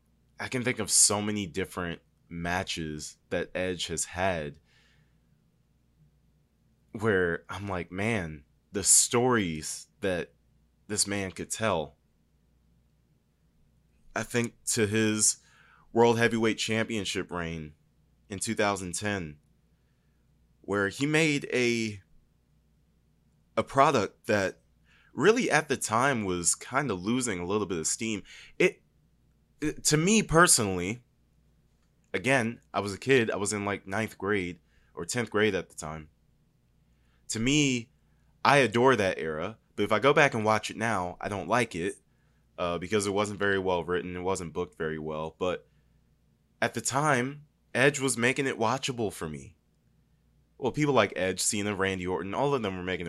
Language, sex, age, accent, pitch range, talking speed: English, male, 20-39, American, 85-115 Hz, 145 wpm